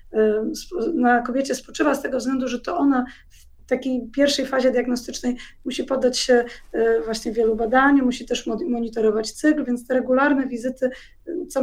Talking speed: 150 wpm